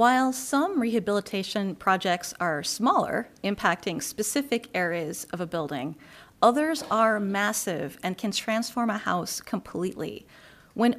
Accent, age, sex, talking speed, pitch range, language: American, 40-59, female, 120 wpm, 180-245 Hz, English